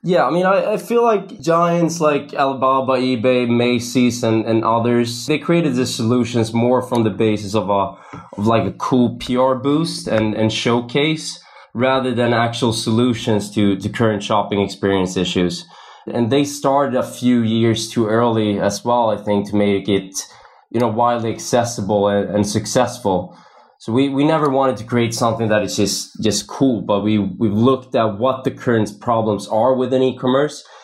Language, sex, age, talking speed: English, male, 20-39, 175 wpm